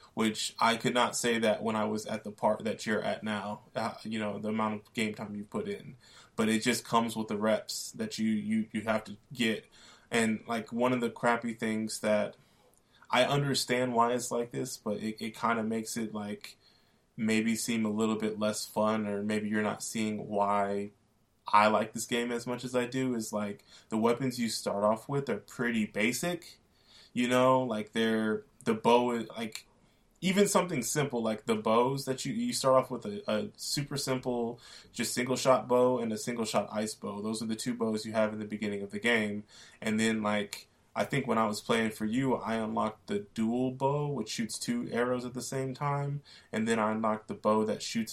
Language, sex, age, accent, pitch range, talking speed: English, male, 20-39, American, 110-125 Hz, 215 wpm